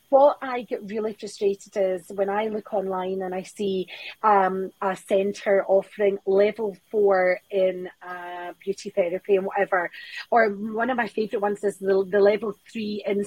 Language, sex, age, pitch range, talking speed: English, female, 30-49, 200-250 Hz, 165 wpm